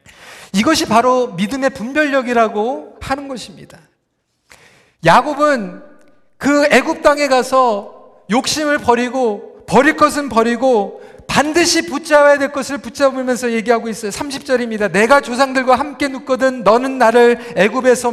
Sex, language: male, Korean